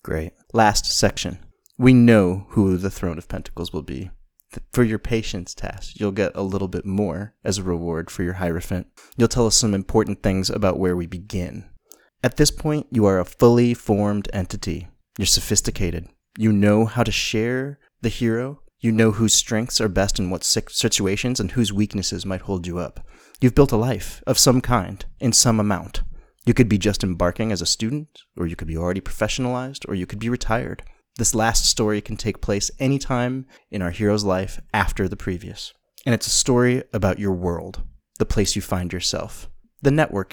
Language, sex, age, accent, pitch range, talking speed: English, male, 30-49, American, 95-115 Hz, 195 wpm